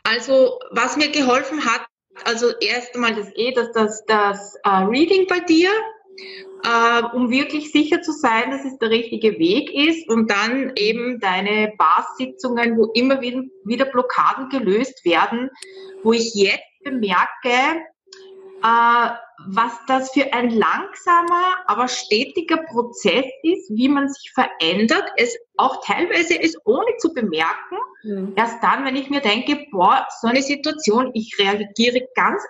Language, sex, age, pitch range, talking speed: German, female, 30-49, 220-300 Hz, 145 wpm